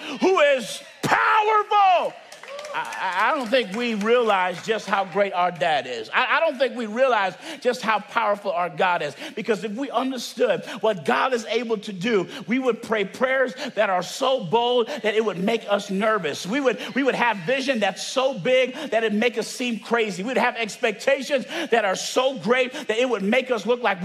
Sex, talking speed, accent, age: male, 200 wpm, American, 50-69